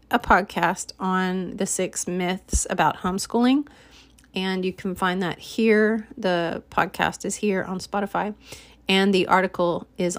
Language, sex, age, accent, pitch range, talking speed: English, female, 30-49, American, 180-210 Hz, 140 wpm